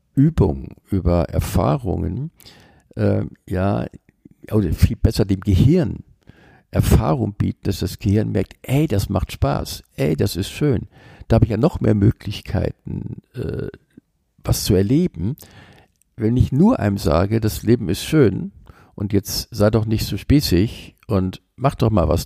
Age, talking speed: 50-69, 150 wpm